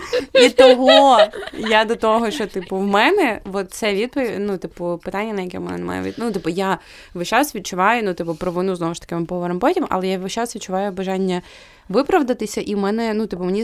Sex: female